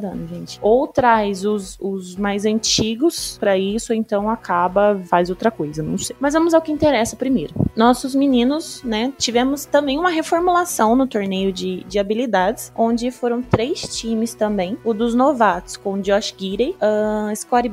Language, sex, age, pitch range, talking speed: Portuguese, female, 20-39, 205-270 Hz, 165 wpm